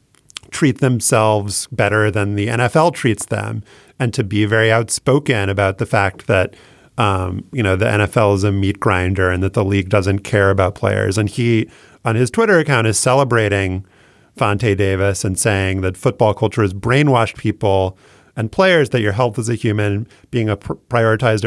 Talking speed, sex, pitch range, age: 180 wpm, male, 105-130 Hz, 40-59